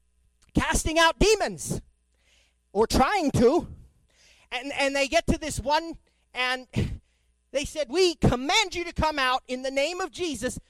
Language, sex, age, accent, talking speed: English, male, 40-59, American, 150 wpm